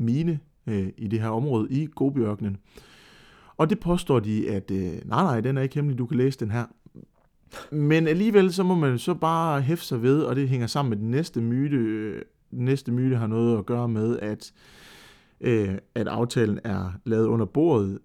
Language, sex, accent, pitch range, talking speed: Danish, male, native, 110-145 Hz, 195 wpm